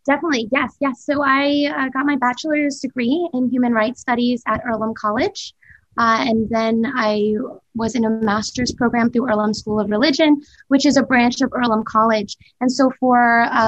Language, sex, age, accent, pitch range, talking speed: English, female, 20-39, American, 220-265 Hz, 185 wpm